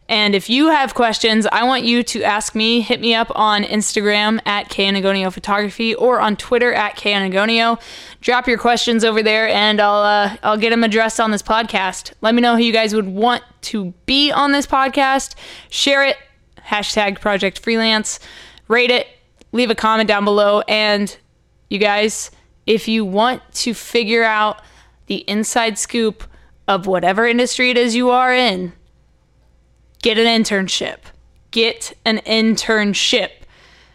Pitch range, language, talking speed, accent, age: 215-265 Hz, English, 165 wpm, American, 10-29